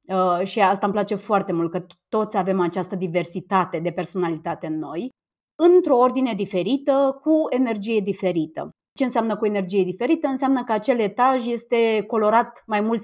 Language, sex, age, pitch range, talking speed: Romanian, female, 20-39, 185-245 Hz, 155 wpm